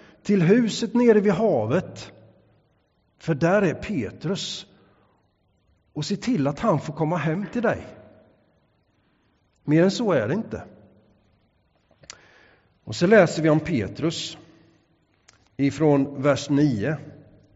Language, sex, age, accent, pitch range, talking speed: English, male, 50-69, Swedish, 130-190 Hz, 115 wpm